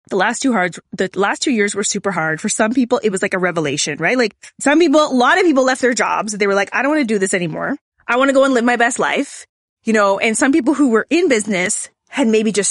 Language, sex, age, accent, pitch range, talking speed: English, female, 20-39, American, 195-255 Hz, 290 wpm